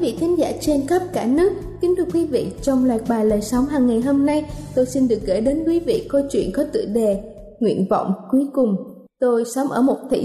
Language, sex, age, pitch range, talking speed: Vietnamese, female, 20-39, 235-300 Hz, 245 wpm